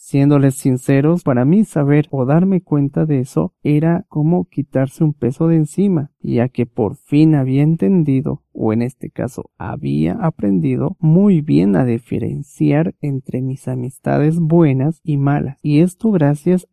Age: 40-59